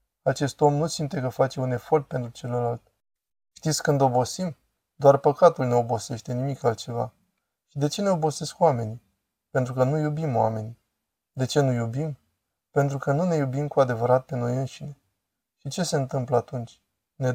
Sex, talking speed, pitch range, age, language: male, 175 wpm, 120-150 Hz, 20-39, Romanian